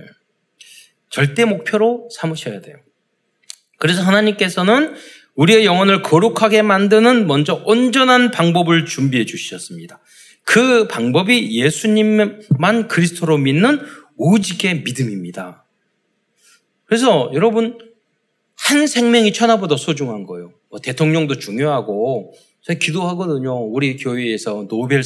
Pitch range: 150-230 Hz